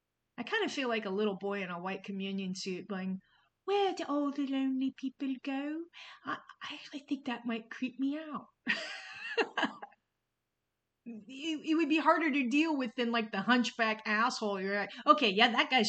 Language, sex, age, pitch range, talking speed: English, female, 30-49, 185-255 Hz, 185 wpm